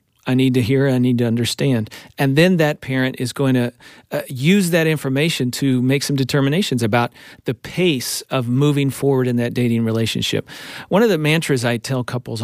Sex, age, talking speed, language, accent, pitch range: male, 40-59, 195 wpm, English, American, 125-150 Hz